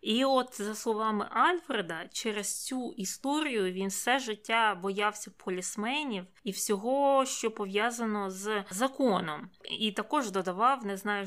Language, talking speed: Ukrainian, 130 wpm